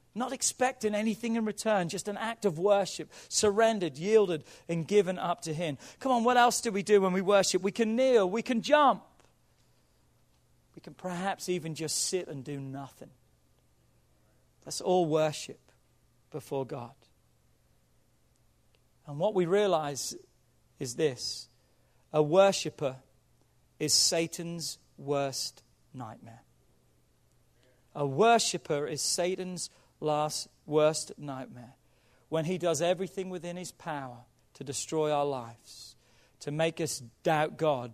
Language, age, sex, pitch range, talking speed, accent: English, 40-59, male, 135-195 Hz, 130 wpm, British